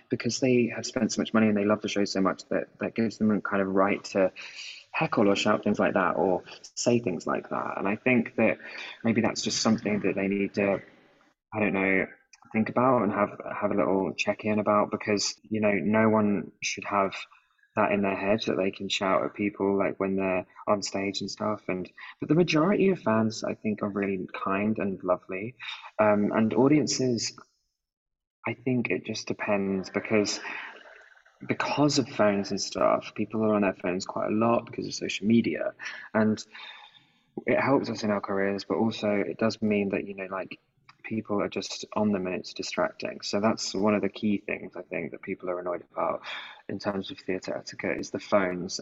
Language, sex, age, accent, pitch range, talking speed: English, male, 20-39, British, 100-110 Hz, 205 wpm